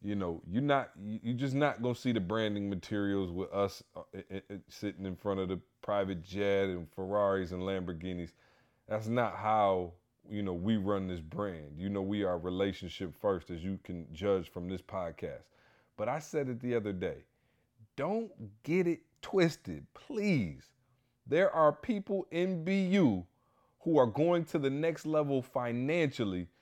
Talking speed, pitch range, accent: 165 wpm, 100-130 Hz, American